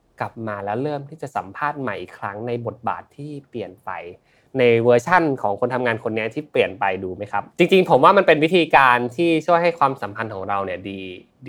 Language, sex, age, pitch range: Thai, male, 20-39, 110-145 Hz